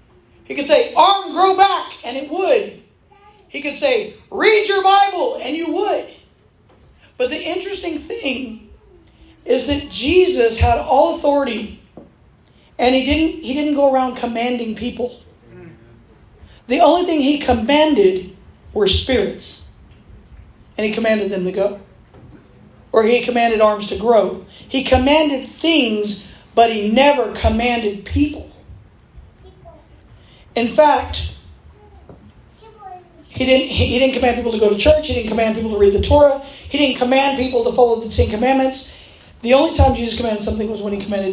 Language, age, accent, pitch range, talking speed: English, 40-59, American, 225-305 Hz, 145 wpm